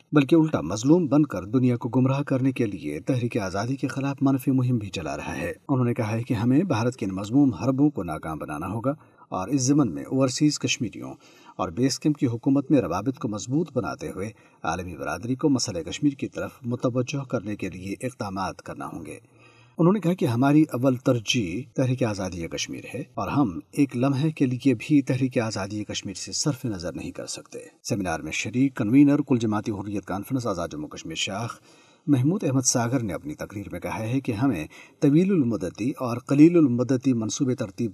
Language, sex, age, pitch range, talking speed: Urdu, male, 50-69, 115-145 Hz, 195 wpm